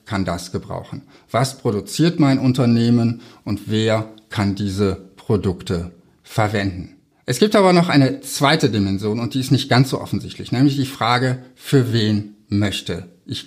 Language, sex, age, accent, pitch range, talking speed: German, male, 60-79, German, 115-145 Hz, 150 wpm